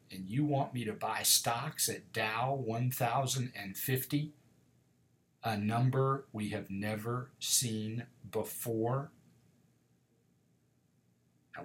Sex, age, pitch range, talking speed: male, 50-69, 105-135 Hz, 95 wpm